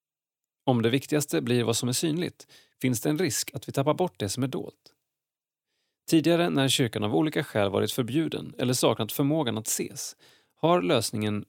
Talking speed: 185 wpm